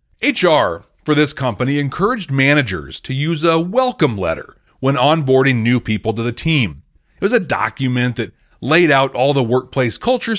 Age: 40-59